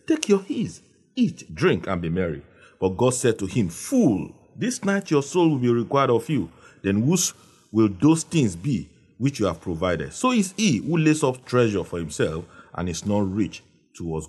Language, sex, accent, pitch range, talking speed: English, male, Nigerian, 95-160 Hz, 195 wpm